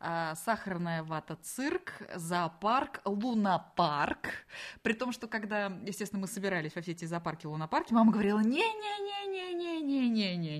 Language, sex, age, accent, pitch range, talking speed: Russian, female, 20-39, native, 165-230 Hz, 160 wpm